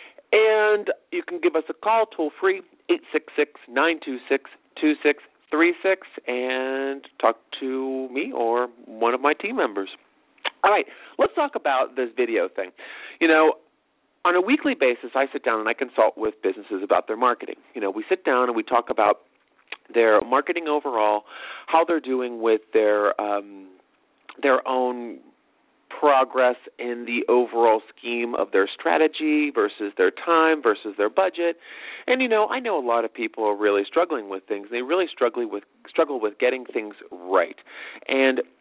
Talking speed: 160 wpm